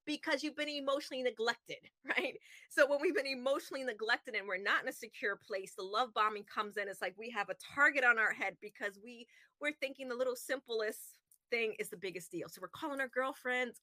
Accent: American